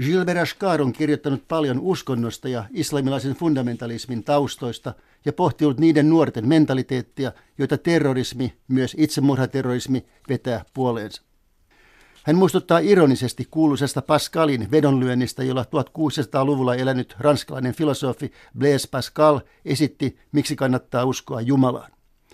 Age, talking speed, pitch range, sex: 60-79, 105 wpm, 125-150 Hz, male